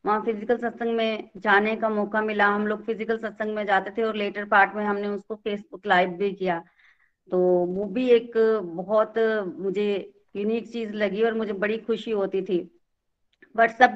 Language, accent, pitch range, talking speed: Hindi, native, 200-235 Hz, 170 wpm